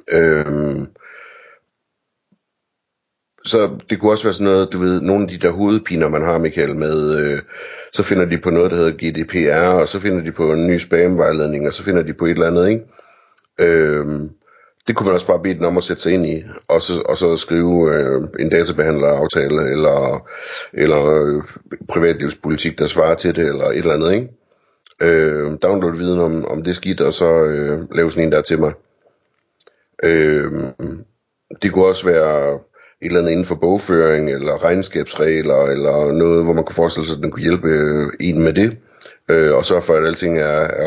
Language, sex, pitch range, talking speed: Danish, male, 75-95 Hz, 195 wpm